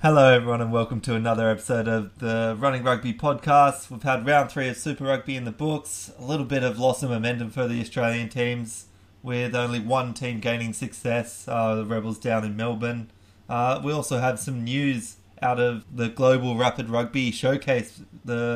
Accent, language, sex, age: Australian, English, male, 20-39